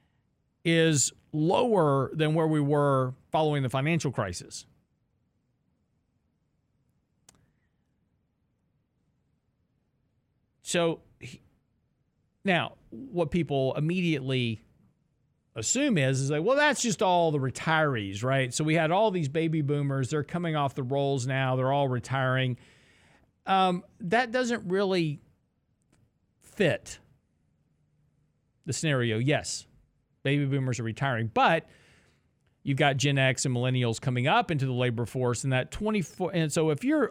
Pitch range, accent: 135-170 Hz, American